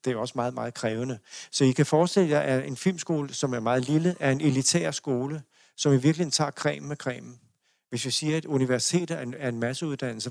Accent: native